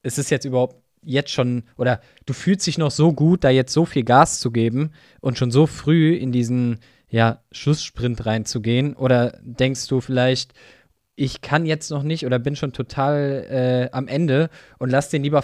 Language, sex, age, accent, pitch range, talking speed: German, male, 20-39, German, 120-145 Hz, 190 wpm